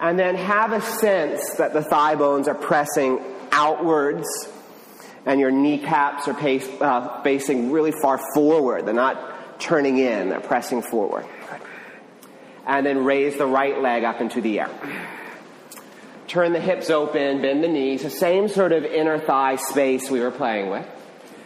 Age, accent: 30-49, American